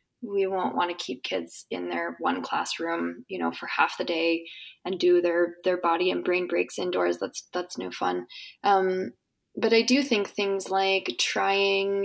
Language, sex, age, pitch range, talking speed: English, female, 20-39, 170-205 Hz, 185 wpm